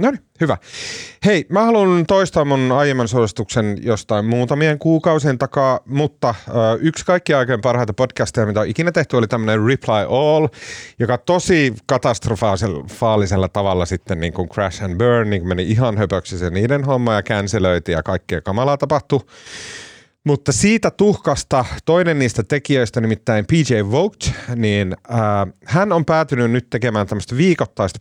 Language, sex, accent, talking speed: Finnish, male, native, 150 wpm